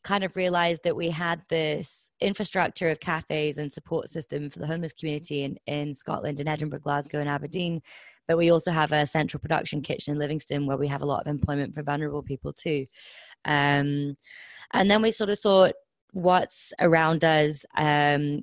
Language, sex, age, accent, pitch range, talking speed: English, female, 20-39, British, 145-170 Hz, 190 wpm